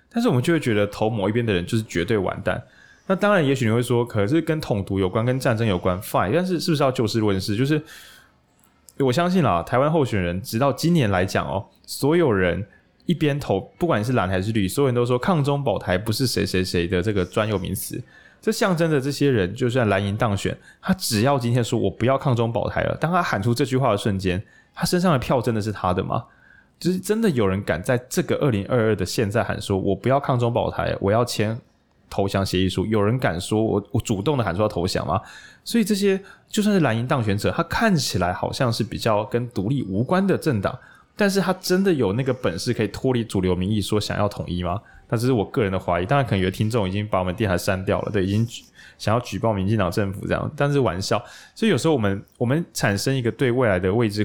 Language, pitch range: Chinese, 100-140 Hz